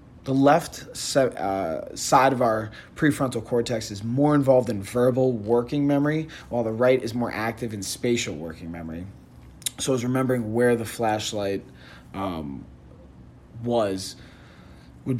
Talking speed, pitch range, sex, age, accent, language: 135 wpm, 110-135 Hz, male, 30-49, American, English